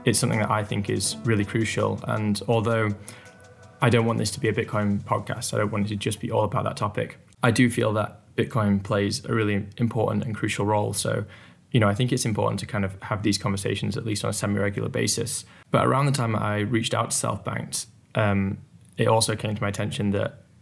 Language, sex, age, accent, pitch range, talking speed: English, male, 10-29, British, 100-120 Hz, 225 wpm